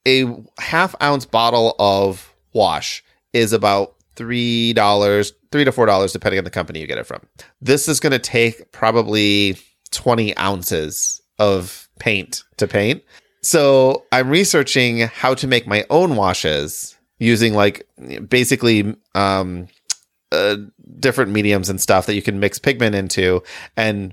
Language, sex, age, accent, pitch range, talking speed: English, male, 30-49, American, 105-140 Hz, 140 wpm